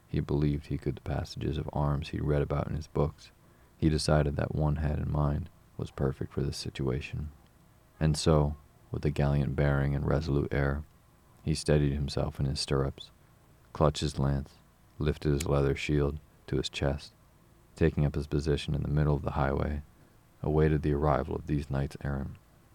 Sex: male